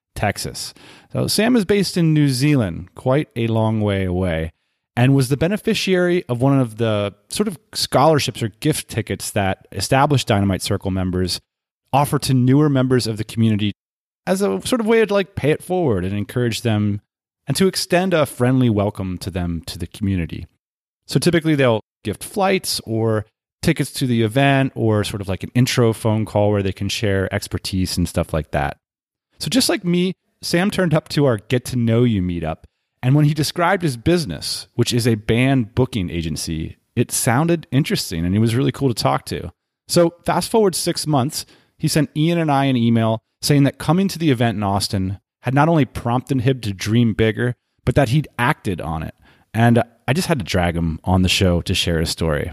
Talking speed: 200 wpm